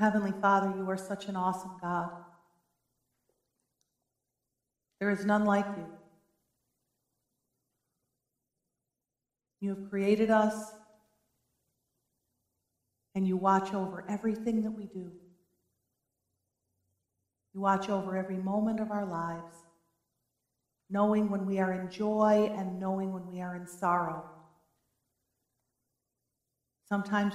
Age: 40-59